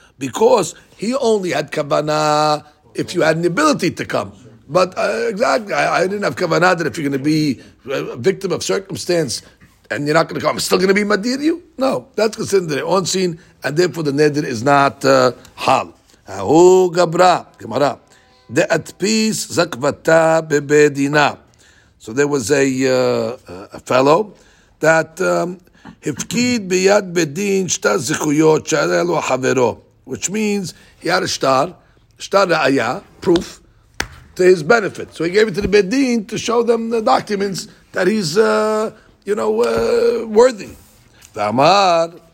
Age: 50-69